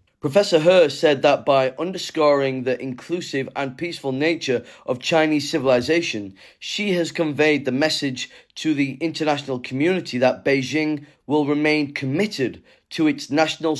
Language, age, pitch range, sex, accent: Chinese, 30-49, 130-165 Hz, male, British